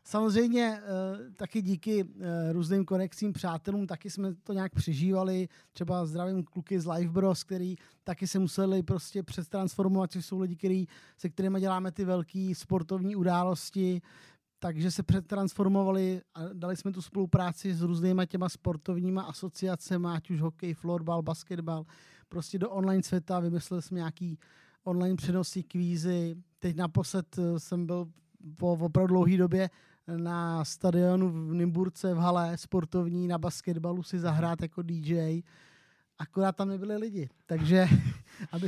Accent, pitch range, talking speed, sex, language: native, 170-195 Hz, 135 wpm, male, Czech